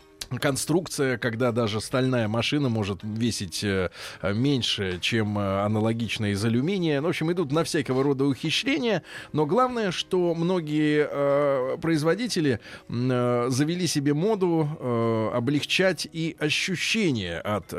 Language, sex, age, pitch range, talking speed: Russian, male, 20-39, 115-150 Hz, 125 wpm